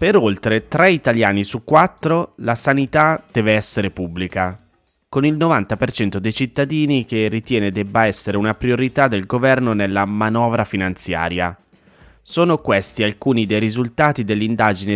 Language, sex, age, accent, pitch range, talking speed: Italian, male, 20-39, native, 95-120 Hz, 130 wpm